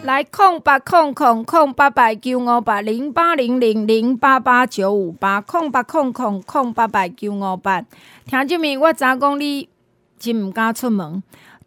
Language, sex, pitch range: Chinese, female, 215-295 Hz